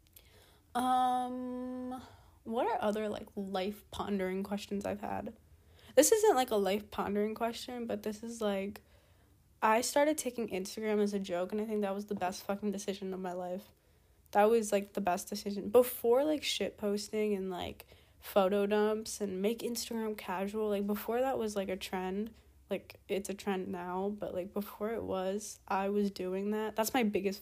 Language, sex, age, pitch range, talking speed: English, female, 20-39, 185-215 Hz, 175 wpm